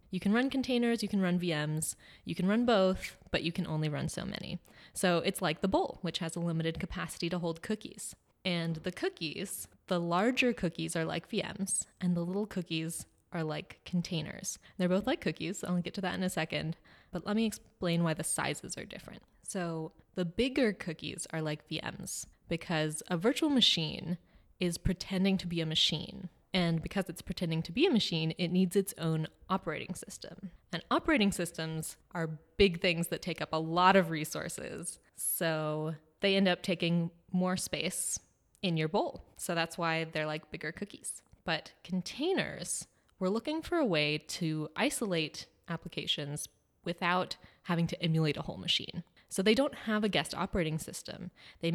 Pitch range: 160-195 Hz